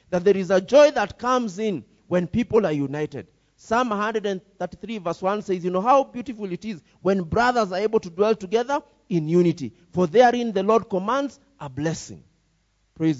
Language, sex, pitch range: English, male, 160-225 Hz